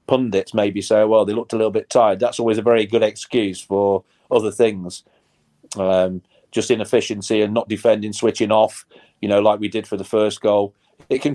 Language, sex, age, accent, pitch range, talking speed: English, male, 40-59, British, 105-130 Hz, 200 wpm